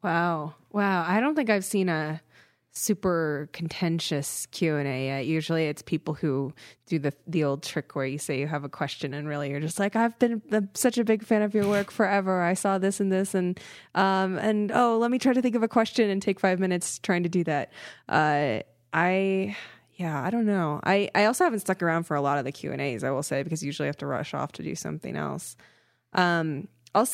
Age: 20-39